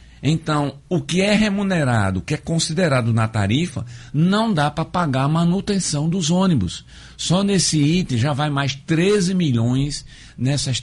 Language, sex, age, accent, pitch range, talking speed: Portuguese, male, 60-79, Brazilian, 130-175 Hz, 155 wpm